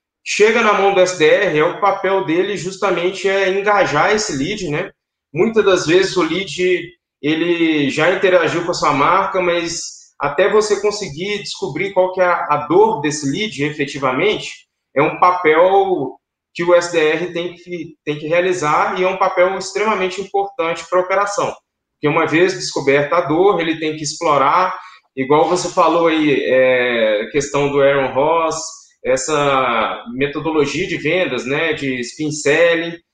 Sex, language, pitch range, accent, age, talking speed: male, Portuguese, 160-200 Hz, Brazilian, 20-39, 160 wpm